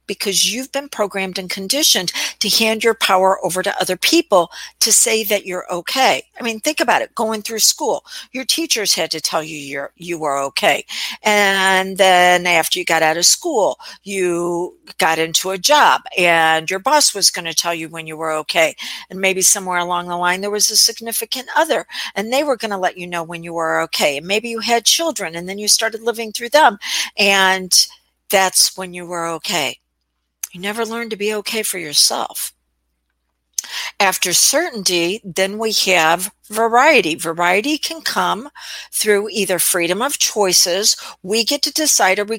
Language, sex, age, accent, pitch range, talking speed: English, female, 50-69, American, 175-225 Hz, 185 wpm